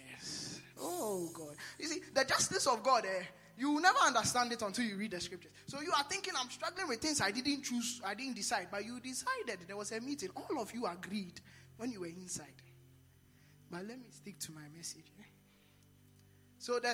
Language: English